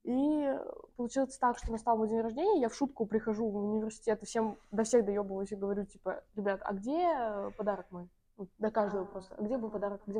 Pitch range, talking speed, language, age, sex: 215-265 Hz, 210 wpm, Russian, 20-39, female